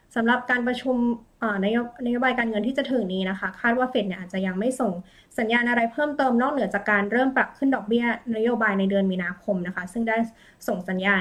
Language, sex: Thai, female